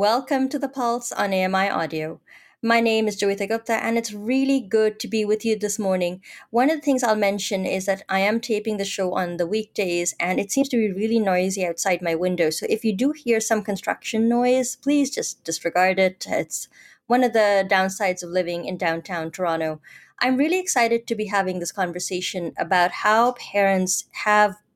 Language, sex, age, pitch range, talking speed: English, female, 20-39, 180-230 Hz, 195 wpm